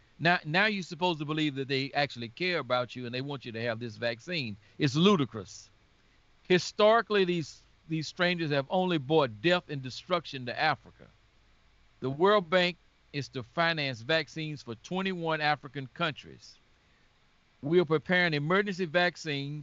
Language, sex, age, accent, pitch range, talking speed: English, male, 50-69, American, 125-160 Hz, 155 wpm